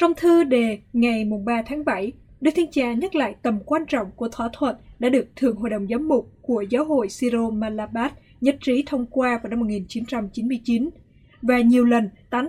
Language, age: Vietnamese, 20-39